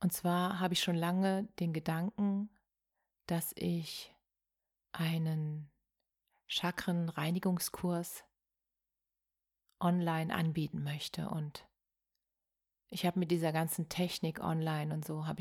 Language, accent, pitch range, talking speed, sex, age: German, German, 160-185 Hz, 100 wpm, female, 30-49